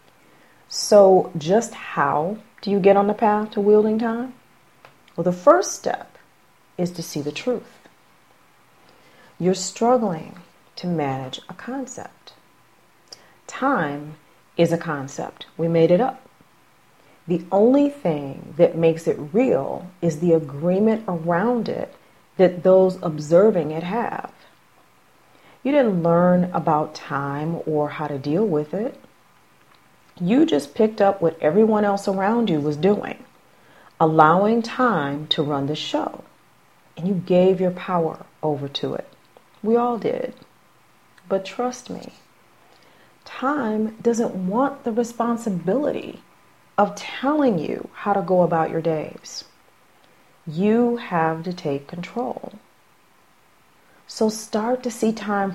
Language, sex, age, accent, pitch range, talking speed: English, female, 40-59, American, 165-220 Hz, 125 wpm